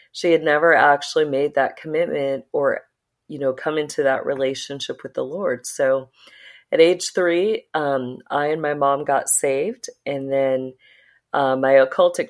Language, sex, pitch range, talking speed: English, female, 135-170 Hz, 160 wpm